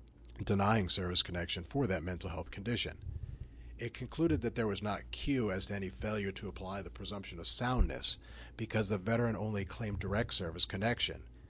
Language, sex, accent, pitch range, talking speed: English, male, American, 85-100 Hz, 170 wpm